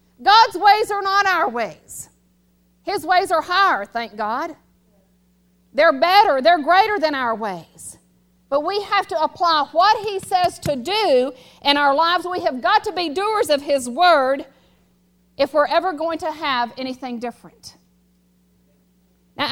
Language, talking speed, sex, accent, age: English, 155 wpm, female, American, 50-69